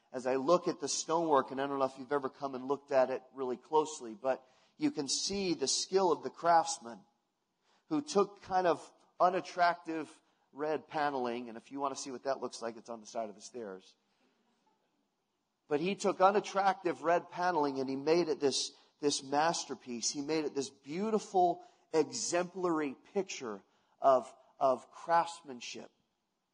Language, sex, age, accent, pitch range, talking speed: English, male, 40-59, American, 130-175 Hz, 170 wpm